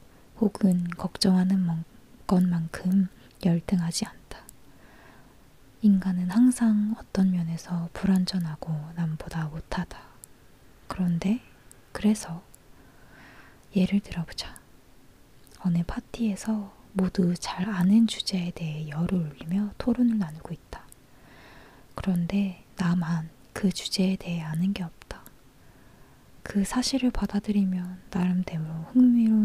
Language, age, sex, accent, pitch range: Korean, 20-39, female, native, 170-200 Hz